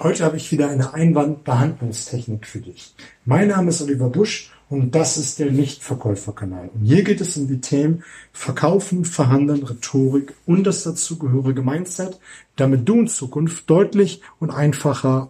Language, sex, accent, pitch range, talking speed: German, male, German, 125-155 Hz, 155 wpm